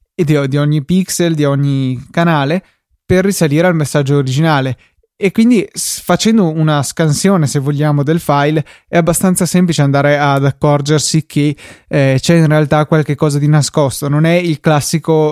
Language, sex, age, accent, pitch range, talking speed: Italian, male, 20-39, native, 145-175 Hz, 155 wpm